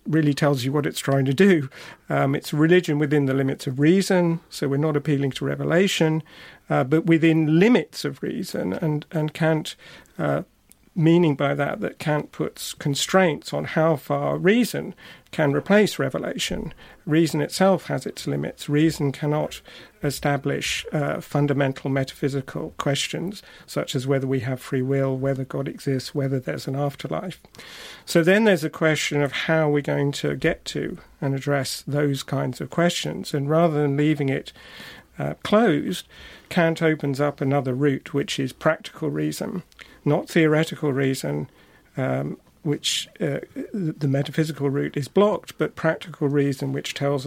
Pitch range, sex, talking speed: 140-160 Hz, male, 155 wpm